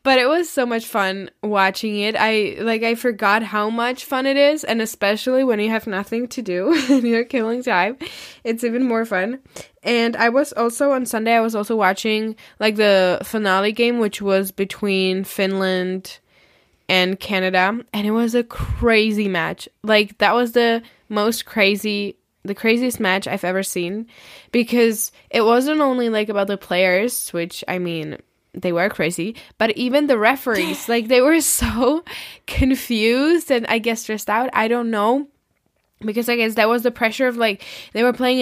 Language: English